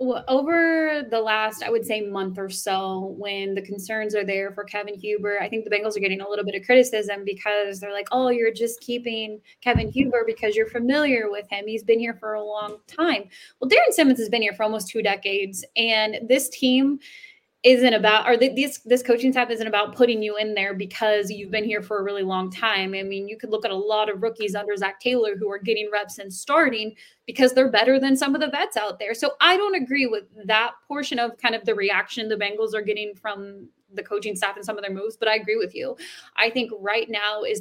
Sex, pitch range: female, 210-250 Hz